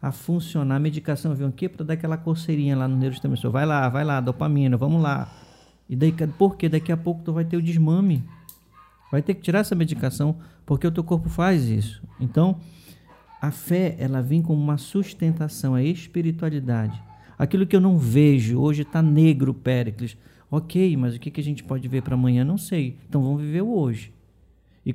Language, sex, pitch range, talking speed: Portuguese, male, 135-170 Hz, 190 wpm